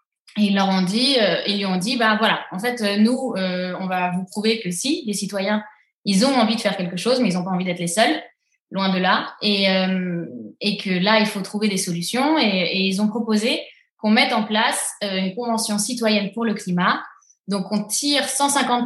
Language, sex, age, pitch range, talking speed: French, female, 20-39, 185-230 Hz, 230 wpm